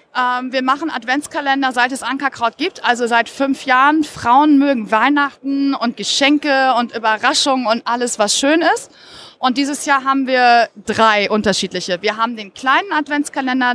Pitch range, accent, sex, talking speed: 240-280 Hz, German, female, 155 wpm